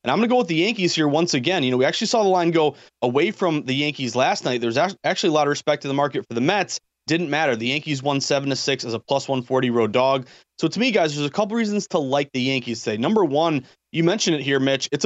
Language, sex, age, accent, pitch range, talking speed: English, male, 30-49, American, 135-170 Hz, 300 wpm